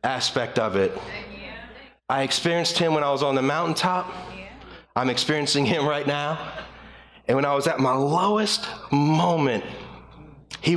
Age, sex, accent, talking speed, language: 40-59, male, American, 145 wpm, English